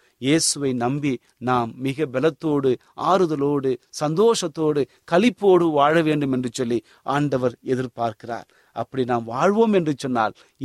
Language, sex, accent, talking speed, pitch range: Tamil, male, native, 105 wpm, 120-155 Hz